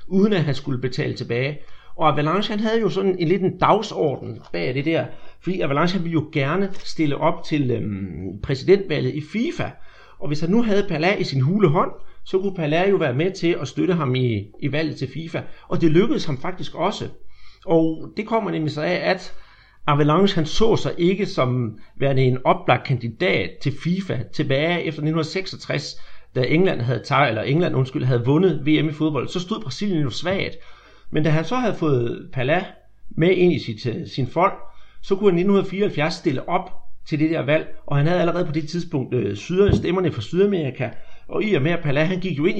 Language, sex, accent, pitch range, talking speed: Danish, male, native, 140-185 Hz, 205 wpm